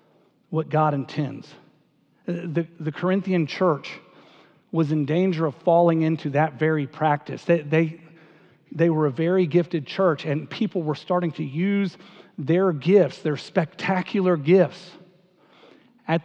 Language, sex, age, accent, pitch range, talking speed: English, male, 40-59, American, 155-185 Hz, 130 wpm